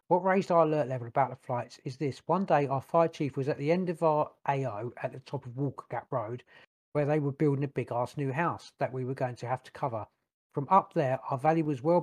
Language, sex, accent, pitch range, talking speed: English, male, British, 130-160 Hz, 265 wpm